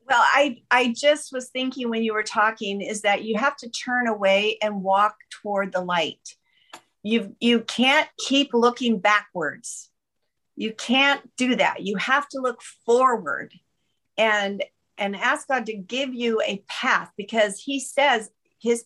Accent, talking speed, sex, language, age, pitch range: American, 165 wpm, female, English, 50-69, 210-255 Hz